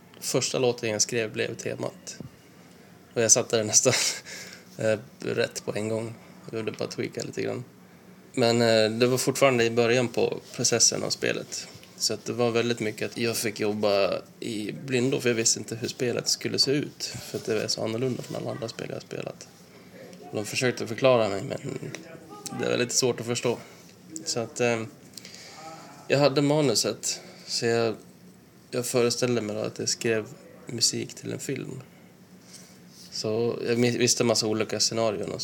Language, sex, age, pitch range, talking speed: Swedish, male, 10-29, 110-120 Hz, 170 wpm